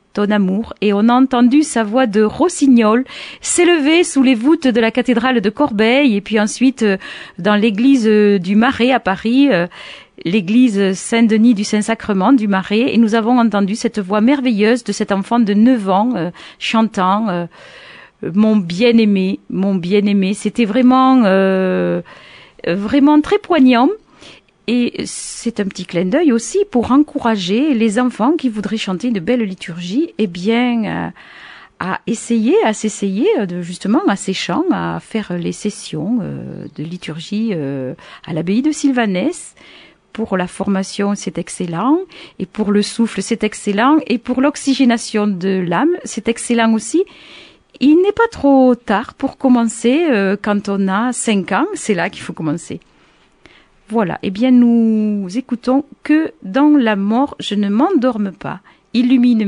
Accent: French